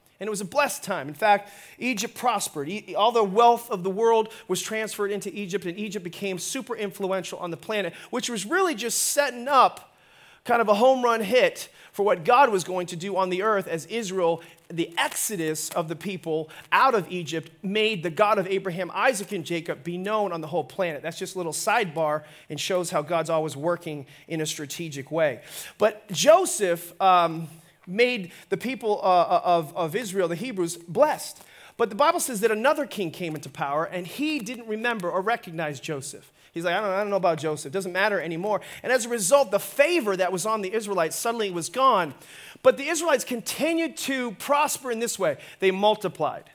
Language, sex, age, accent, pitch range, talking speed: English, male, 30-49, American, 170-230 Hz, 200 wpm